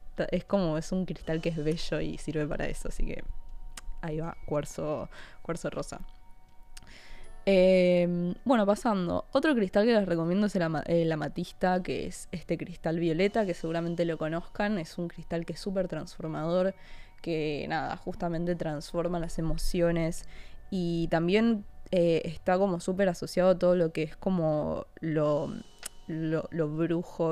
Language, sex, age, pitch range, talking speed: Spanish, female, 20-39, 165-195 Hz, 155 wpm